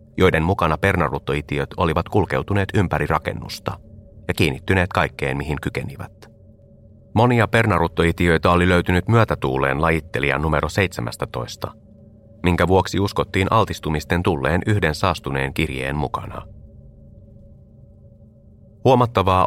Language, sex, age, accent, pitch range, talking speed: Finnish, male, 30-49, native, 75-105 Hz, 90 wpm